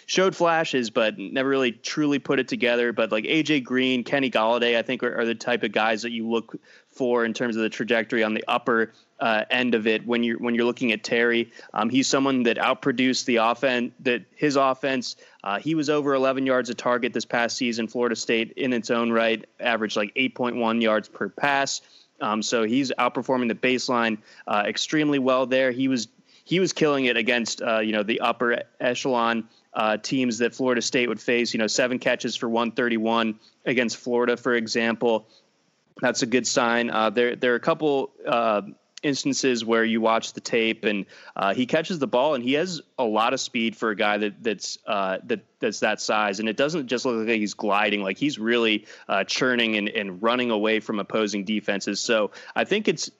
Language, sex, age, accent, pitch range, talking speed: English, male, 20-39, American, 115-130 Hz, 205 wpm